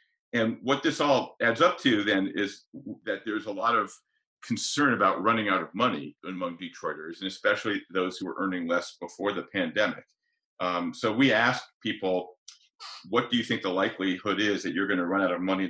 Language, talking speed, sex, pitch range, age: English, 200 wpm, male, 90-135 Hz, 50-69